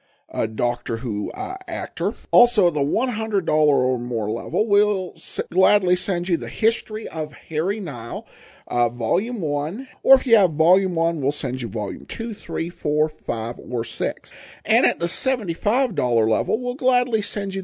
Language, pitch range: English, 130-195 Hz